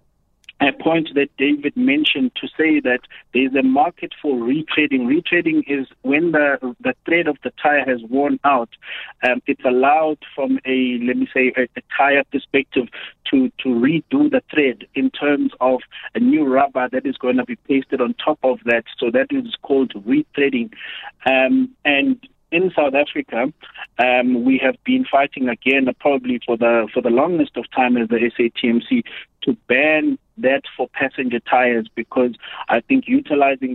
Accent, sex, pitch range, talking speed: South African, male, 125-170 Hz, 170 wpm